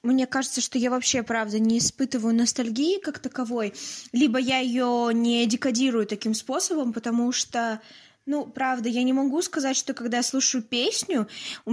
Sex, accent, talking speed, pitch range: female, native, 165 wpm, 225-265 Hz